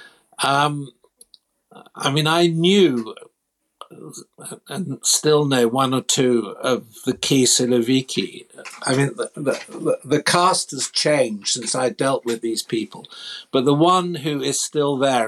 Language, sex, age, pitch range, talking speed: English, male, 60-79, 120-150 Hz, 145 wpm